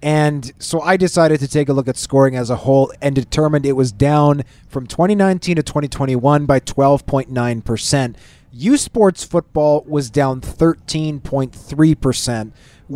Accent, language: American, English